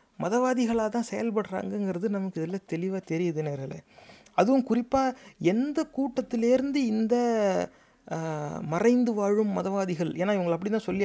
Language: Tamil